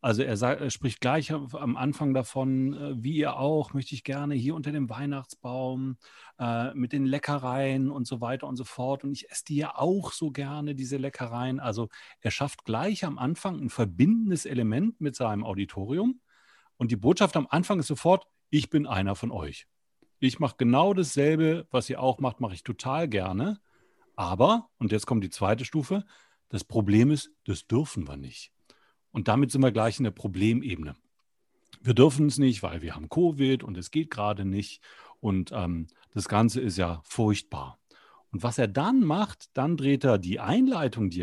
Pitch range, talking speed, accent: 110-150 Hz, 185 wpm, German